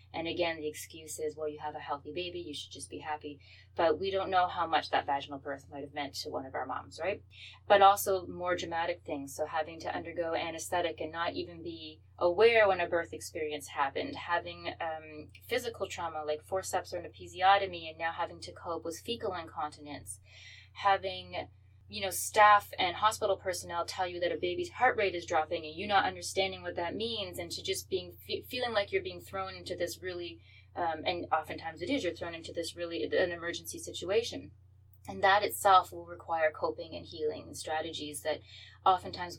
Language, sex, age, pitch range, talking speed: English, female, 20-39, 140-190 Hz, 200 wpm